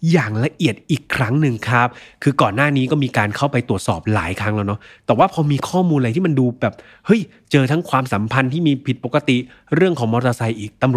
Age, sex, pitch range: 20-39, male, 110-145 Hz